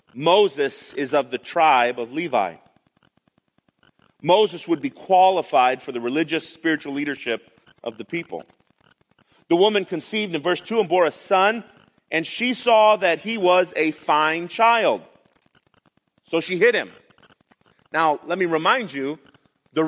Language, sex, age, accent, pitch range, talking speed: English, male, 30-49, American, 155-215 Hz, 145 wpm